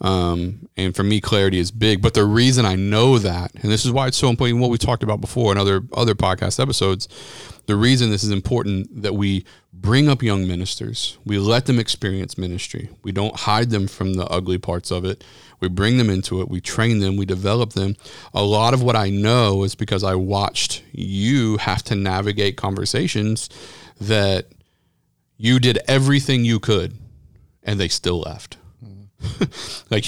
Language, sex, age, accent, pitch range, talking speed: English, male, 40-59, American, 100-125 Hz, 185 wpm